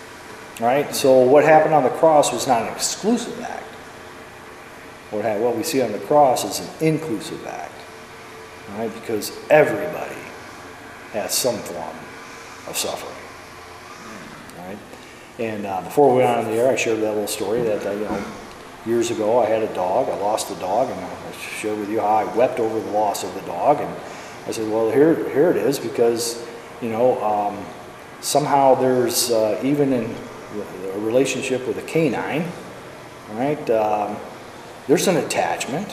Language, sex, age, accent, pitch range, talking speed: English, male, 40-59, American, 105-145 Hz, 160 wpm